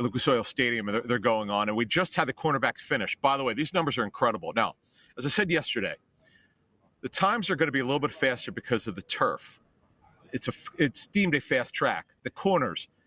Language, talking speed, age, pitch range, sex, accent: English, 225 wpm, 40-59, 120-155 Hz, male, American